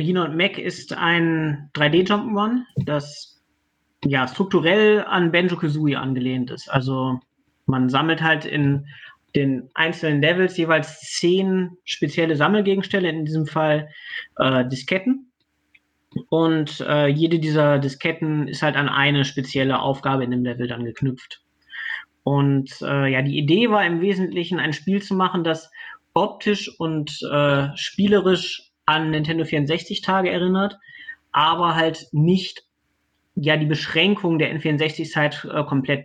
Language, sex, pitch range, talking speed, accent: German, male, 145-180 Hz, 135 wpm, German